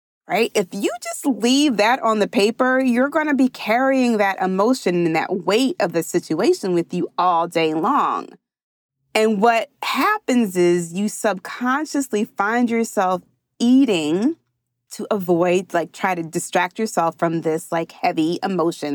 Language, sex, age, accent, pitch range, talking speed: English, female, 30-49, American, 175-250 Hz, 150 wpm